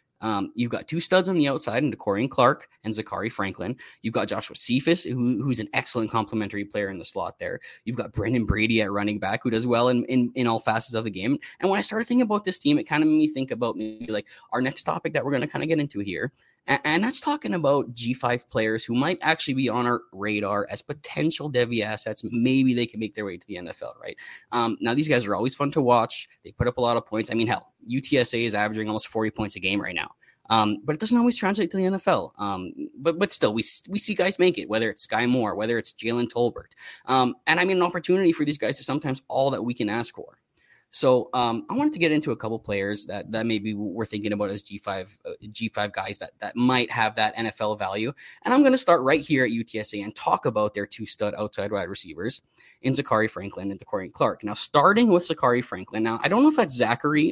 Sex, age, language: male, 10-29, English